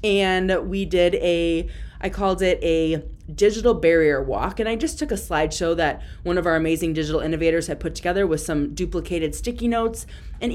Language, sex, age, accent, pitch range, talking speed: English, female, 20-39, American, 160-205 Hz, 190 wpm